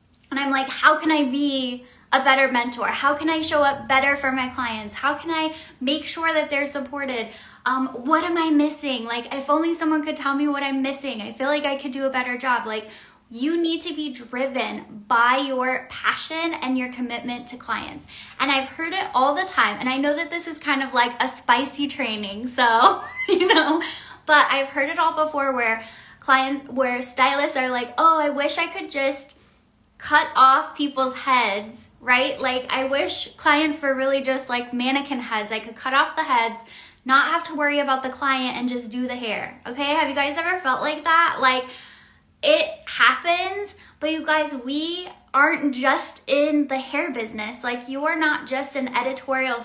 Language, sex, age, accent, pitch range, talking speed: English, female, 10-29, American, 250-300 Hz, 200 wpm